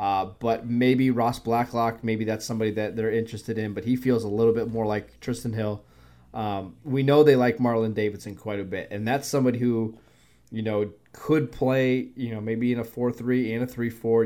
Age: 20-39